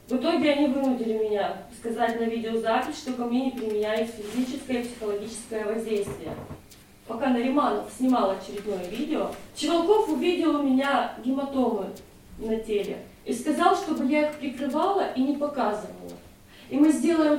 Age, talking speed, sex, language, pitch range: 20-39, 140 wpm, female, Ukrainian, 225-295 Hz